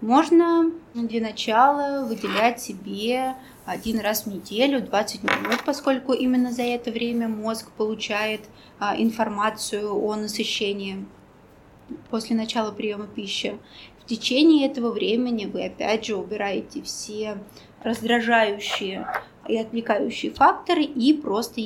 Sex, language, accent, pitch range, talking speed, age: female, Russian, native, 215-250 Hz, 110 wpm, 20-39